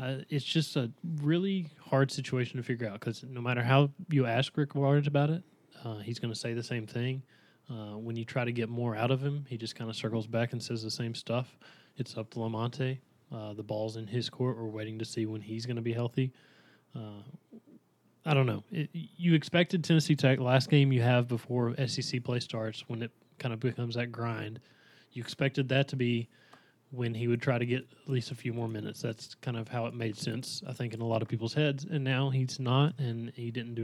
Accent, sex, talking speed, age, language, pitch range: American, male, 240 wpm, 20-39, English, 115-135 Hz